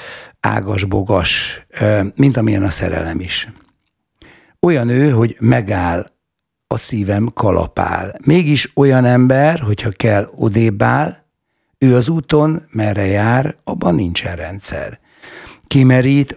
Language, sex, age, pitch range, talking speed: Hungarian, male, 60-79, 100-135 Hz, 105 wpm